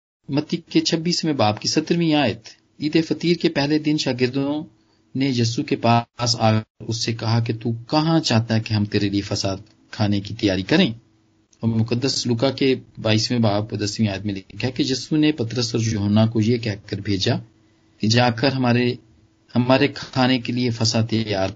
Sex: male